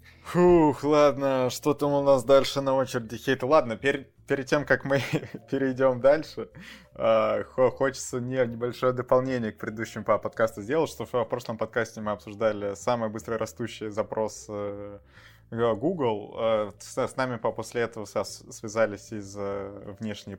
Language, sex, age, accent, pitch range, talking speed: Russian, male, 20-39, native, 110-130 Hz, 125 wpm